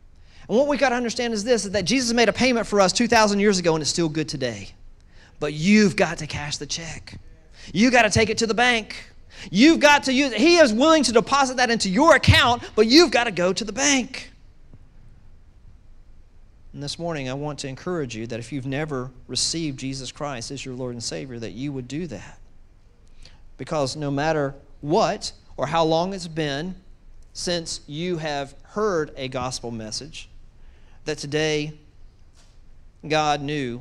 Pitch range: 110-170 Hz